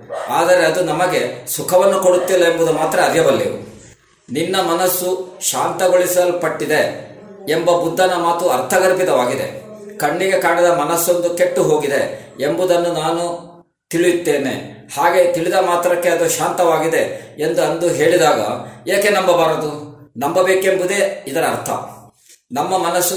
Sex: male